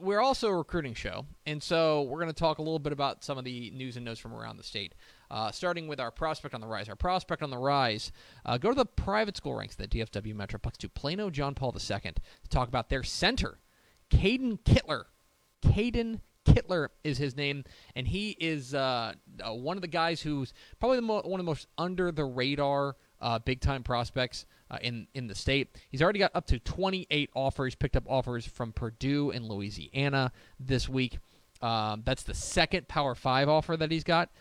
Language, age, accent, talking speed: English, 20-39, American, 205 wpm